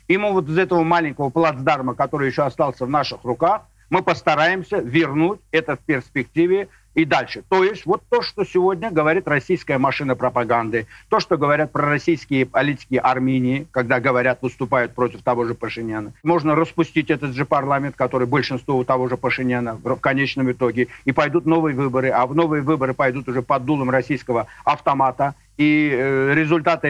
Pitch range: 130-160 Hz